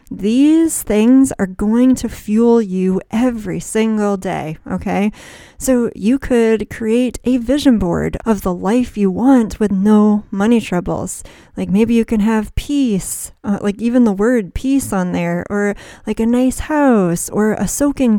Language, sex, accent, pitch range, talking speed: English, female, American, 195-245 Hz, 160 wpm